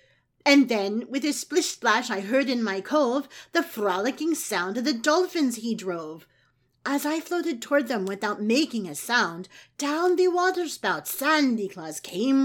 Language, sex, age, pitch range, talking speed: English, female, 40-59, 200-285 Hz, 160 wpm